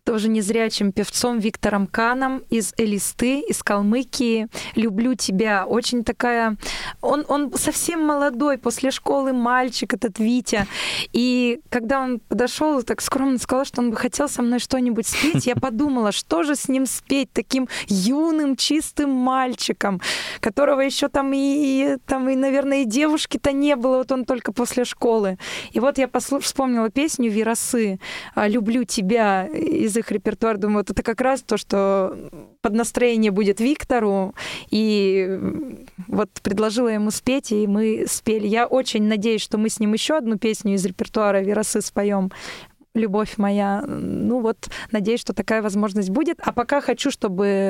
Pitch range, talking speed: 210-260 Hz, 150 wpm